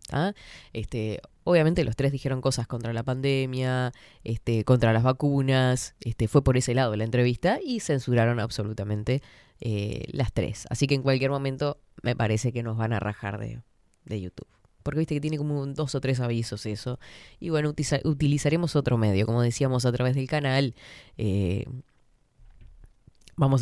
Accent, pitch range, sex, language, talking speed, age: Argentinian, 115-145 Hz, female, Spanish, 170 wpm, 10-29